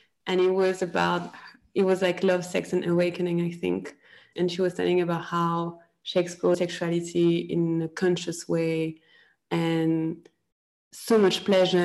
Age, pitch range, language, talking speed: 20-39, 175-210 Hz, English, 145 wpm